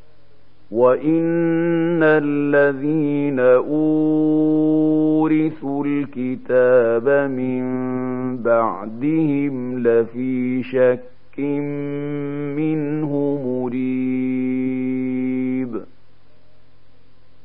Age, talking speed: 50-69, 35 wpm